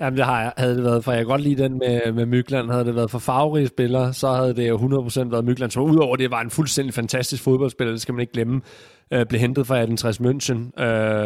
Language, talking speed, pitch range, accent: Danish, 240 wpm, 115-130 Hz, native